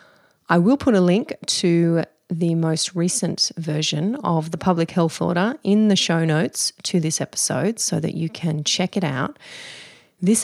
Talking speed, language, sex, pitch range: 170 wpm, English, female, 165-220 Hz